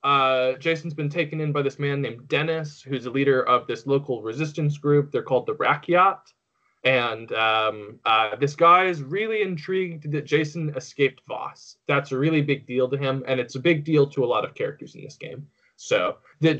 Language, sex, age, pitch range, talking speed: English, male, 20-39, 130-165 Hz, 205 wpm